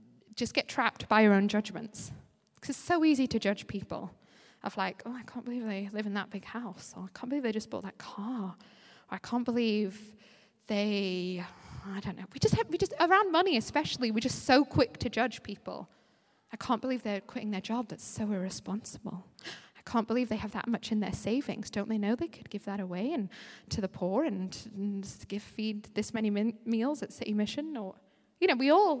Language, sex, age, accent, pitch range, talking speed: English, female, 20-39, British, 200-250 Hz, 220 wpm